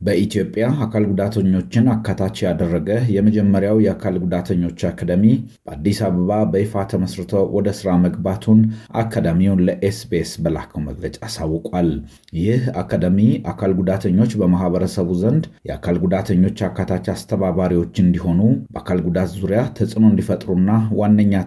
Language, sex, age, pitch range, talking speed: Amharic, male, 30-49, 90-105 Hz, 105 wpm